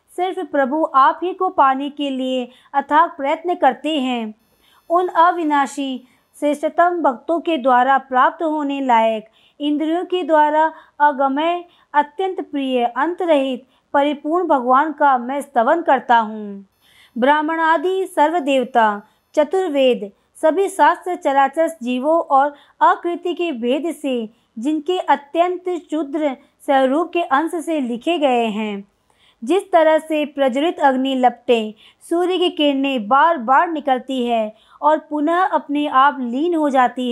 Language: Hindi